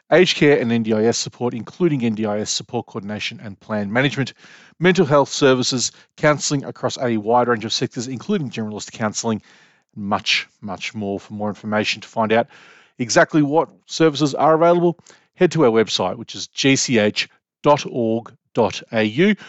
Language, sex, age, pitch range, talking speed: English, male, 40-59, 110-150 Hz, 140 wpm